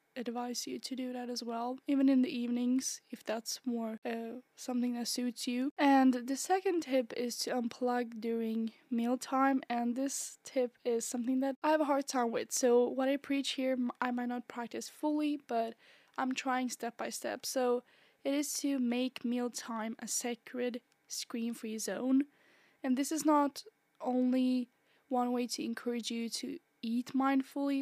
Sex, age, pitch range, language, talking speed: female, 10-29, 235-265 Hz, English, 170 wpm